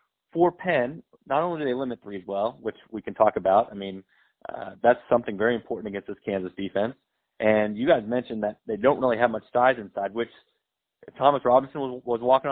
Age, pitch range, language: 30-49, 105-130 Hz, English